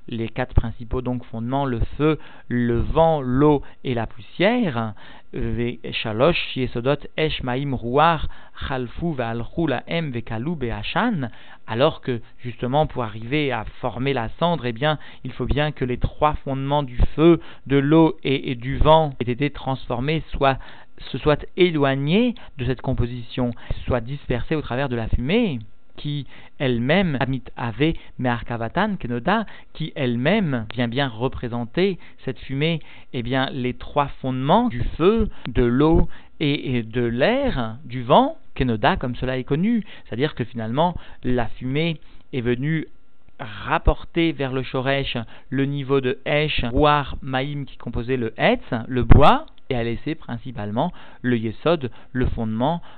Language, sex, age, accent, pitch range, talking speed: French, male, 50-69, French, 120-150 Hz, 125 wpm